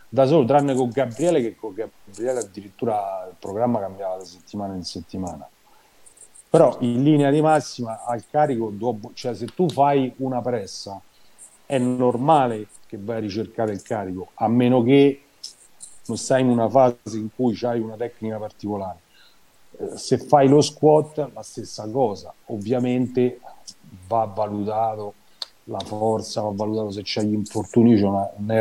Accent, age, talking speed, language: native, 40-59, 150 wpm, Italian